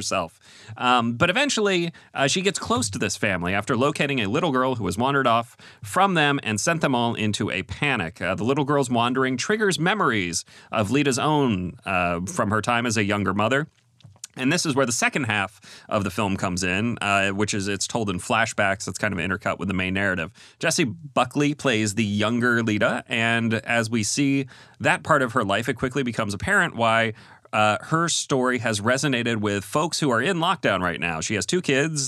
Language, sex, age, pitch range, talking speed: English, male, 30-49, 100-140 Hz, 210 wpm